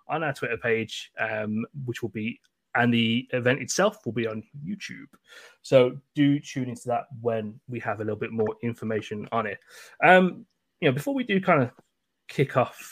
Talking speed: 190 wpm